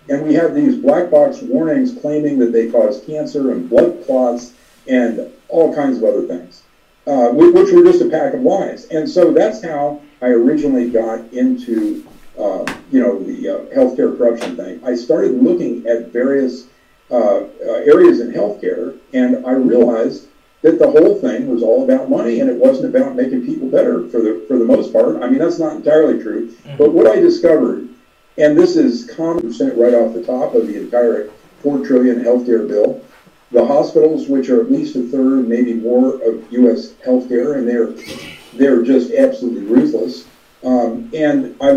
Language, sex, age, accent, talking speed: English, male, 50-69, American, 185 wpm